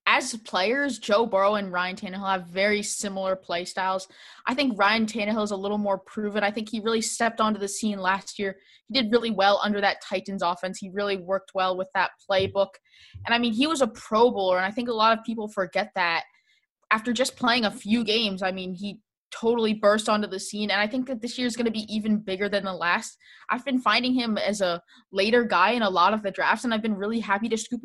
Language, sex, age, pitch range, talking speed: English, female, 20-39, 195-235 Hz, 245 wpm